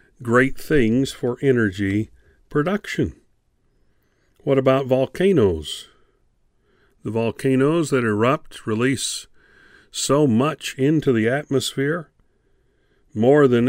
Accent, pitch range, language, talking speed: American, 105-135 Hz, English, 90 wpm